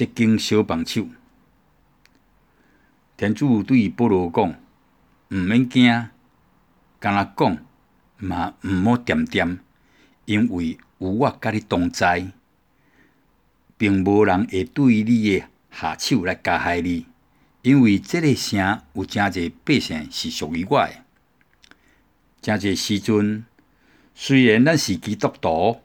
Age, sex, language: 60-79, male, Chinese